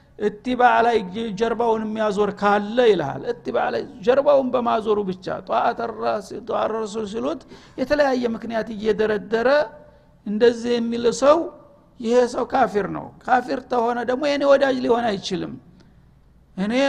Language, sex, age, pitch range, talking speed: Amharic, male, 60-79, 195-240 Hz, 140 wpm